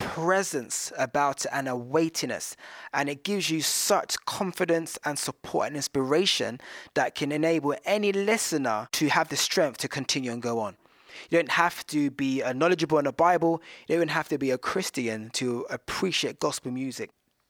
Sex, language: male, English